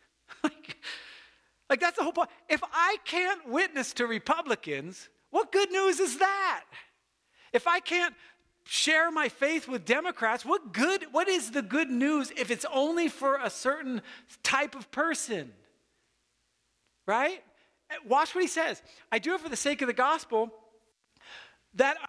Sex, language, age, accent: male, English, 40-59, American